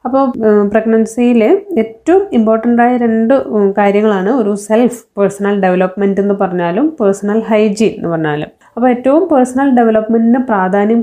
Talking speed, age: 115 wpm, 20-39